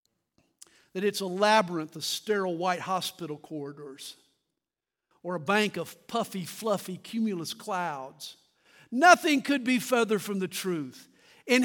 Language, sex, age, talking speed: English, male, 50-69, 130 wpm